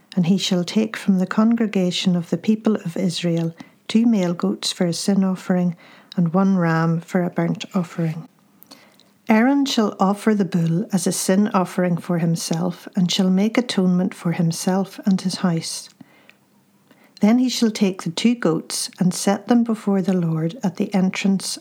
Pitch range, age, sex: 180-215 Hz, 50-69, female